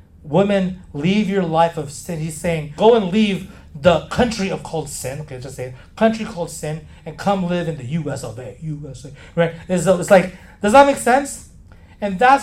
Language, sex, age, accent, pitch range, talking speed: English, male, 30-49, American, 155-245 Hz, 185 wpm